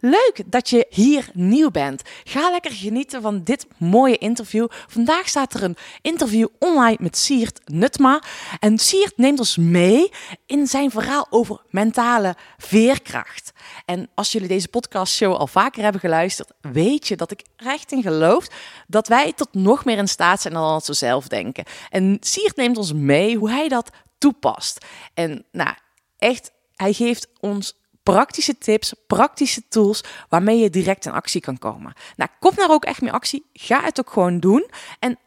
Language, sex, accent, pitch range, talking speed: Dutch, female, Dutch, 185-265 Hz, 175 wpm